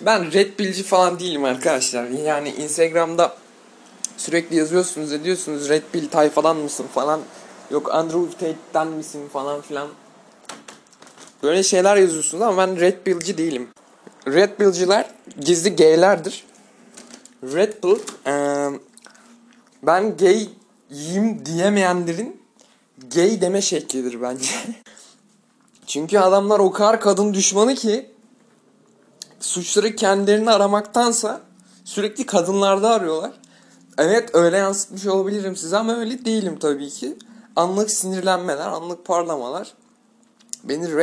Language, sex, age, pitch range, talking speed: Turkish, male, 20-39, 155-215 Hz, 105 wpm